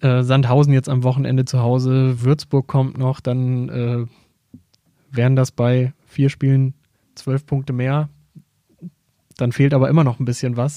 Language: German